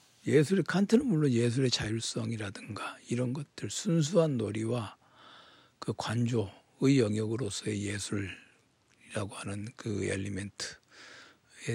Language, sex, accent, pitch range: Korean, male, native, 110-140 Hz